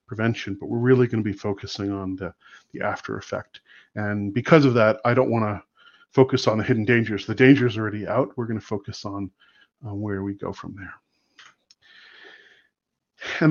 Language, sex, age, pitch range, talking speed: English, male, 40-59, 105-130 Hz, 190 wpm